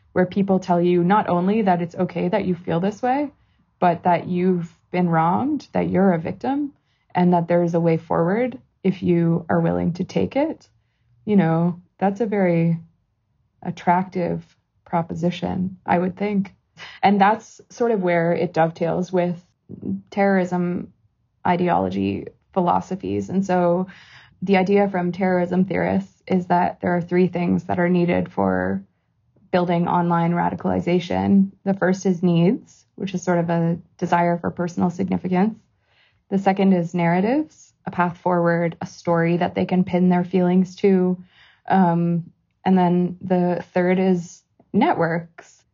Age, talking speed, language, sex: 20-39, 150 wpm, English, female